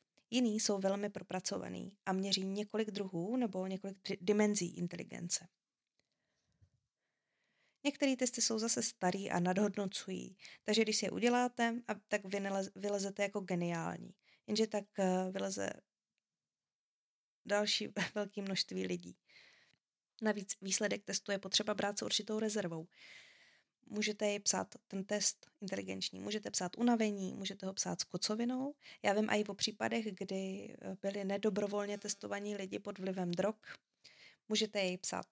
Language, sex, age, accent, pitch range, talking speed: Czech, female, 20-39, native, 185-215 Hz, 125 wpm